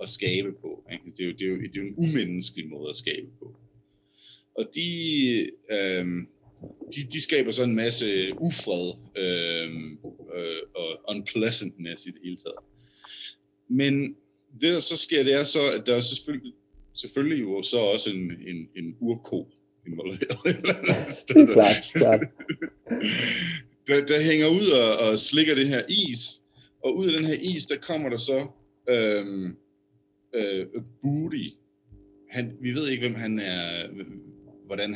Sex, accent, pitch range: male, native, 95-130 Hz